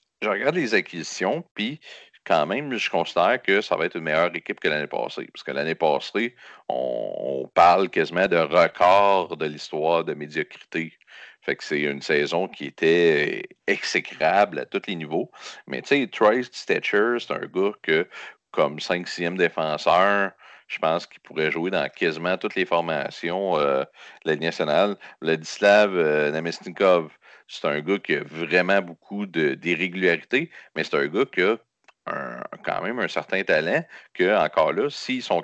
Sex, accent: male, Canadian